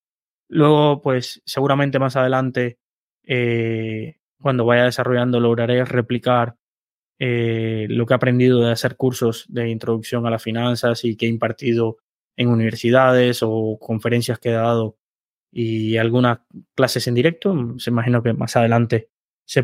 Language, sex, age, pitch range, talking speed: Spanish, male, 20-39, 115-130 Hz, 140 wpm